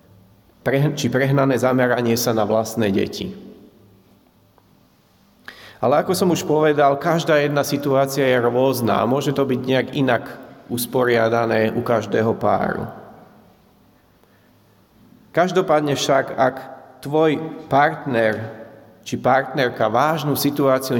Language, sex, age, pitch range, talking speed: Slovak, male, 40-59, 120-145 Hz, 105 wpm